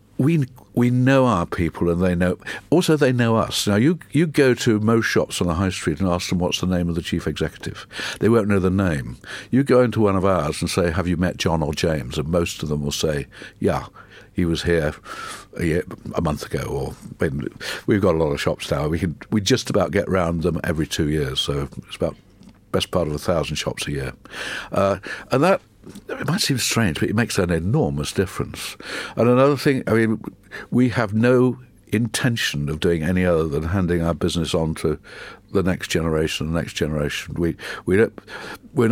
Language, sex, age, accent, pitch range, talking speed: English, male, 60-79, British, 85-115 Hz, 215 wpm